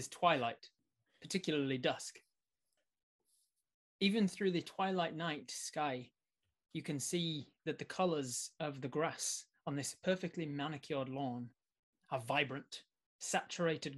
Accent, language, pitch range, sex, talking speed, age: British, English, 140-170 Hz, male, 115 wpm, 20-39